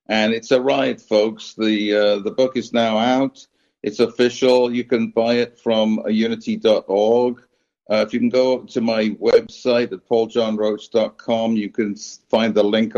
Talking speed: 160 wpm